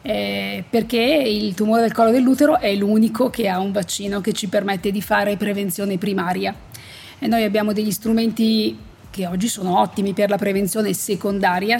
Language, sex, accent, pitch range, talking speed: Italian, female, native, 190-230 Hz, 170 wpm